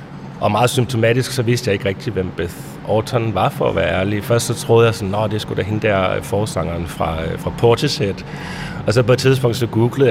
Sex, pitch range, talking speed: male, 95-120 Hz, 225 wpm